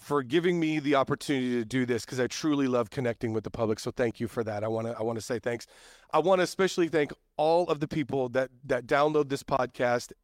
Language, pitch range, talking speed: English, 125-155 Hz, 250 wpm